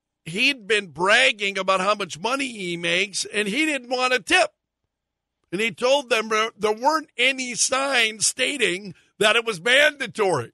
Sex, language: male, English